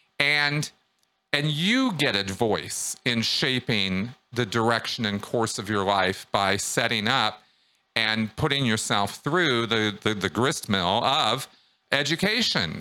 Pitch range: 105-145 Hz